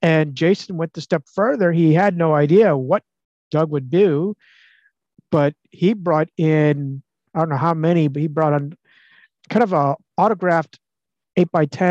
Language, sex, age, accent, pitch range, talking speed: English, male, 50-69, American, 150-200 Hz, 160 wpm